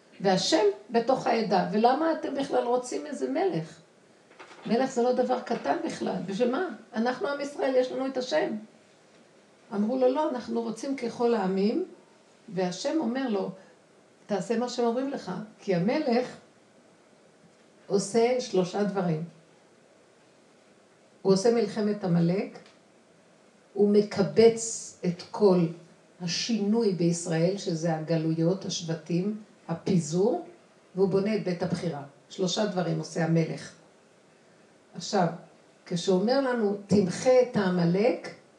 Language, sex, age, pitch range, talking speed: Hebrew, female, 50-69, 180-230 Hz, 115 wpm